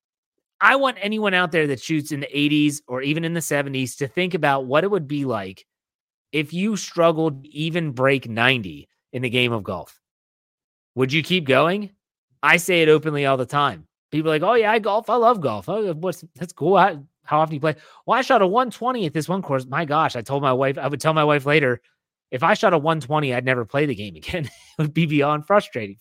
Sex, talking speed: male, 235 wpm